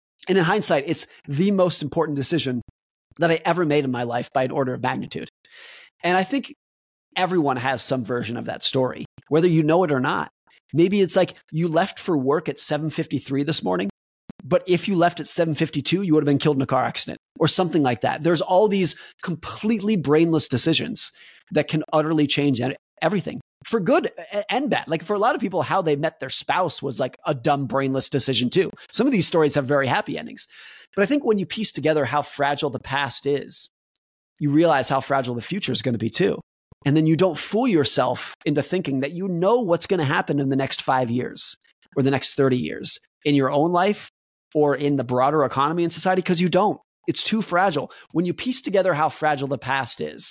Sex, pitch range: male, 135-180 Hz